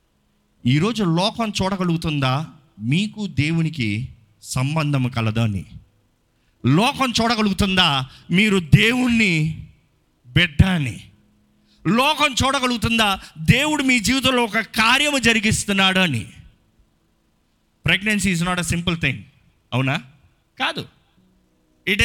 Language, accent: Telugu, native